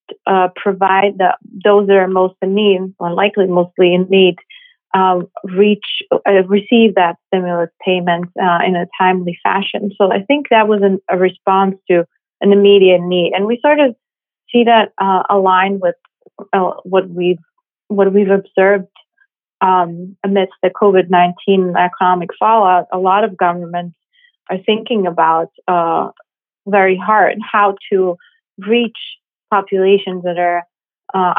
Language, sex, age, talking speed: English, female, 30-49, 145 wpm